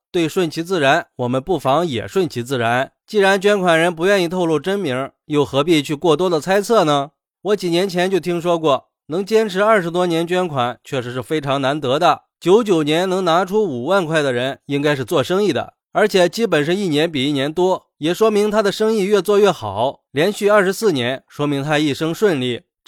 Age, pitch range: 20-39, 150-195 Hz